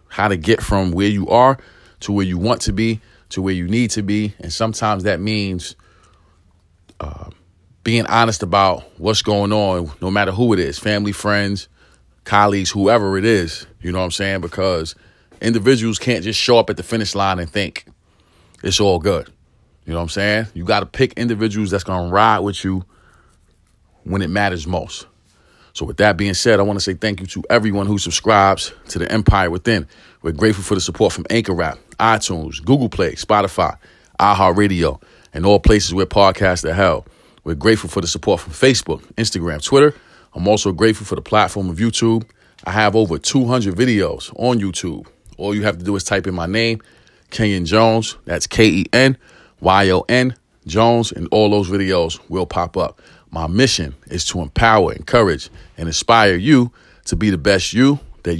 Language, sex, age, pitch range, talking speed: English, male, 30-49, 90-110 Hz, 185 wpm